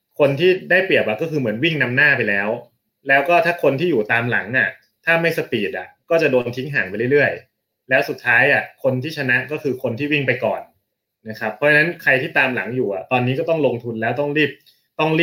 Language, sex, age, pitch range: Thai, male, 20-39, 115-155 Hz